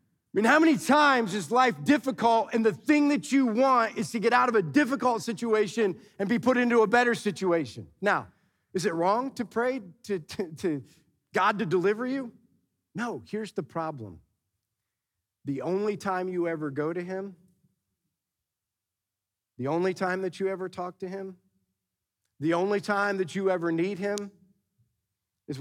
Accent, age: American, 40-59